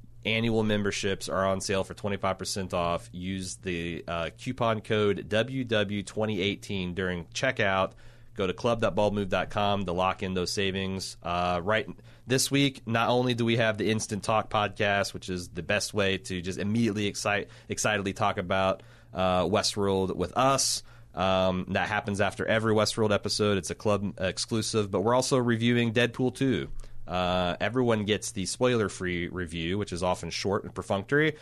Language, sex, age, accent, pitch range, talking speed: English, male, 30-49, American, 95-115 Hz, 155 wpm